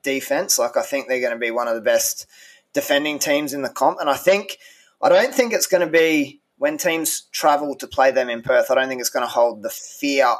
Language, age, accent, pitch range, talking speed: English, 20-39, Australian, 130-200 Hz, 255 wpm